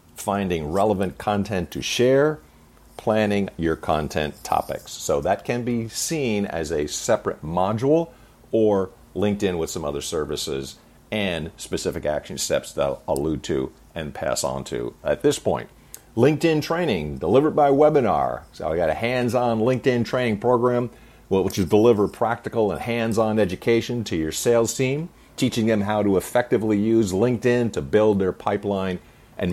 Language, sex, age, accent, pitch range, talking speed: English, male, 50-69, American, 95-125 Hz, 155 wpm